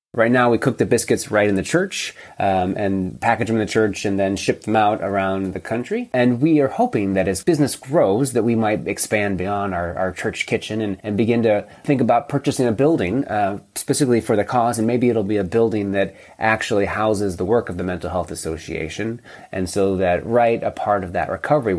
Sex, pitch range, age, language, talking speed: male, 95-115 Hz, 30-49, English, 225 wpm